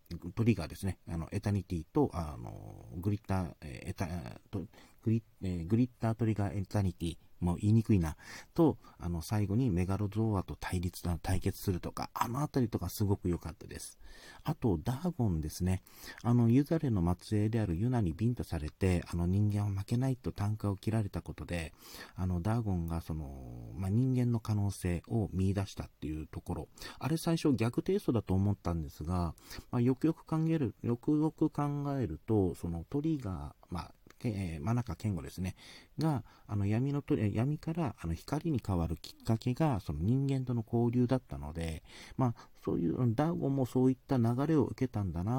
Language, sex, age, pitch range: Japanese, male, 40-59, 85-120 Hz